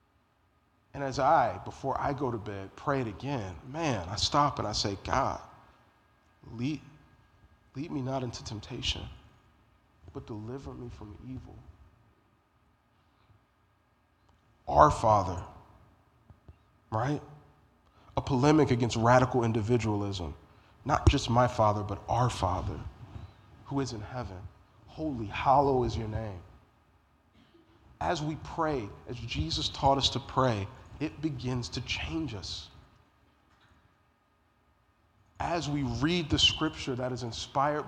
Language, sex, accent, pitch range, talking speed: English, male, American, 100-135 Hz, 120 wpm